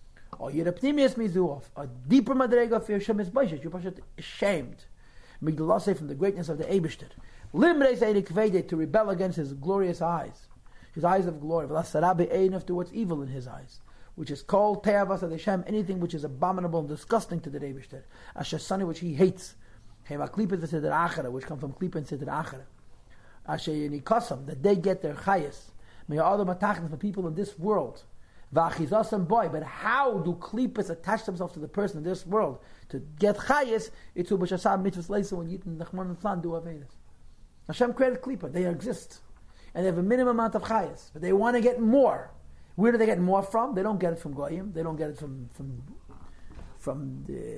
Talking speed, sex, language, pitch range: 190 wpm, male, English, 155-205 Hz